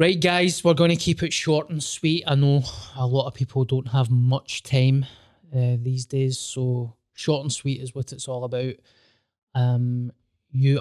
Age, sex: 20-39, male